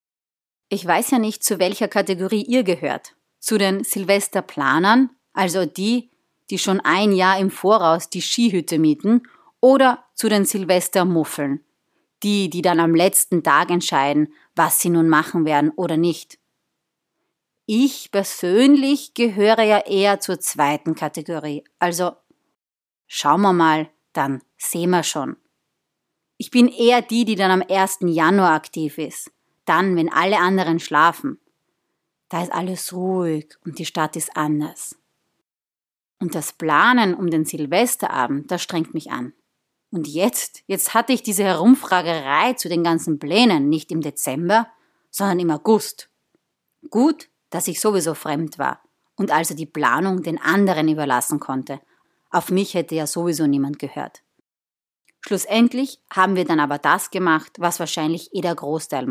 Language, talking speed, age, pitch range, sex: German, 145 wpm, 30-49, 160-205 Hz, female